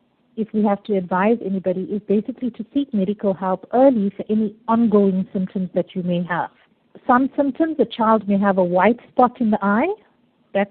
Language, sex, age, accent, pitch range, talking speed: English, female, 50-69, Indian, 195-240 Hz, 190 wpm